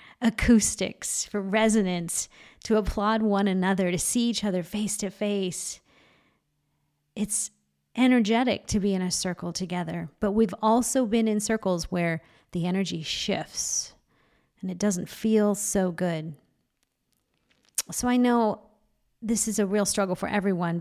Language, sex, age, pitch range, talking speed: English, female, 40-59, 180-215 Hz, 140 wpm